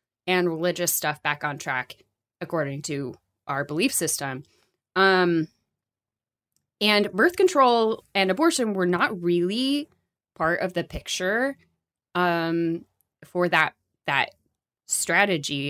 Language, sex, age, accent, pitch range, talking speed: English, female, 20-39, American, 150-185 Hz, 110 wpm